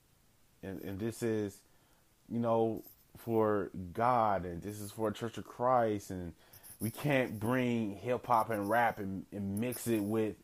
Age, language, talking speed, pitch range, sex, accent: 20-39, English, 155 wpm, 110-140 Hz, male, American